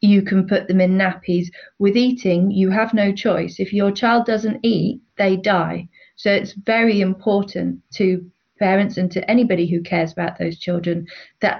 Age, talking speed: 40-59, 175 wpm